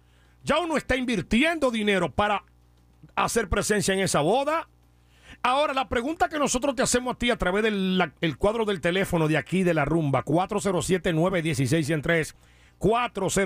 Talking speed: 150 wpm